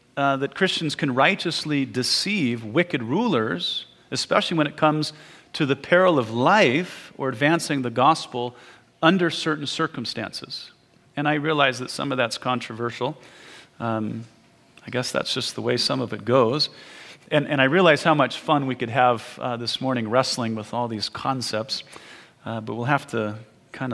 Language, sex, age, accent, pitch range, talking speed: English, male, 40-59, American, 120-150 Hz, 170 wpm